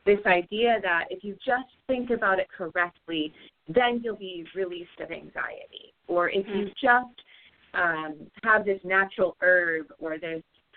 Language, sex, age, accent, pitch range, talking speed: English, female, 30-49, American, 165-235 Hz, 150 wpm